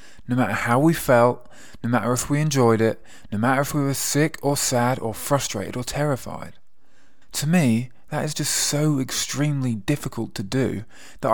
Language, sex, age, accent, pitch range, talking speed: English, male, 20-39, British, 115-145 Hz, 180 wpm